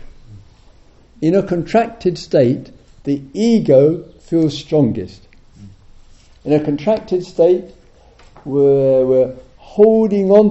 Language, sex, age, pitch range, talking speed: English, male, 50-69, 115-180 Hz, 90 wpm